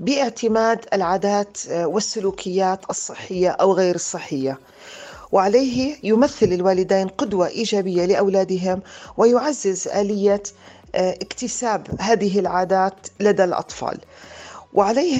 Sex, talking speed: female, 85 wpm